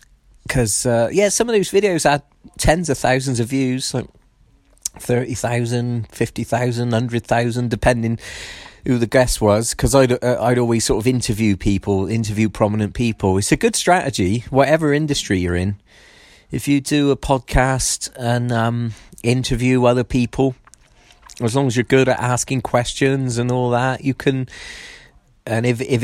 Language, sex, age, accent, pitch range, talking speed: English, male, 30-49, British, 110-130 Hz, 155 wpm